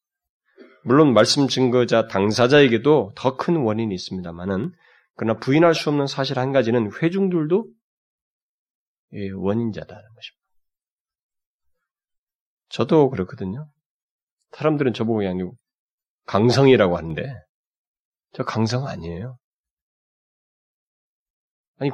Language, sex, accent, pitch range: Korean, male, native, 115-195 Hz